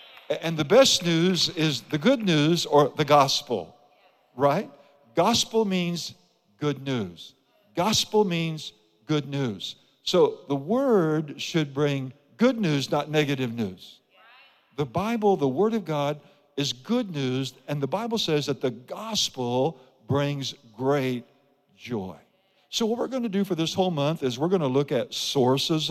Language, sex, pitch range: English, male, 140-190 Hz